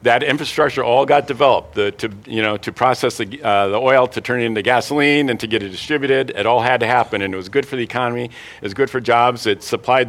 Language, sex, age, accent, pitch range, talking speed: English, male, 50-69, American, 120-165 Hz, 260 wpm